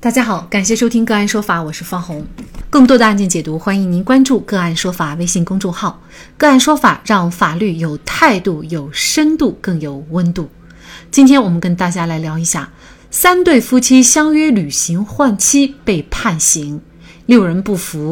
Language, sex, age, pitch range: Chinese, female, 30-49, 170-255 Hz